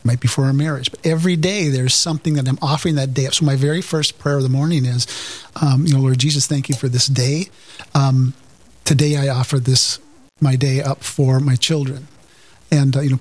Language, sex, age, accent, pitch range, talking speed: English, male, 40-59, American, 135-155 Hz, 225 wpm